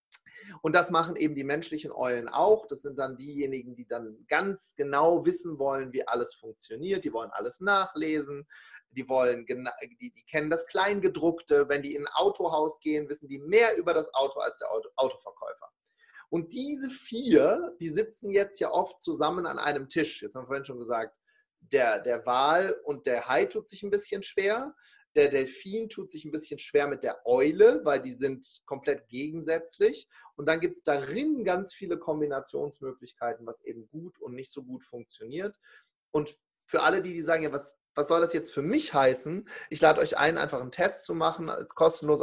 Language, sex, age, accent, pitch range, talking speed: German, male, 30-49, German, 140-200 Hz, 190 wpm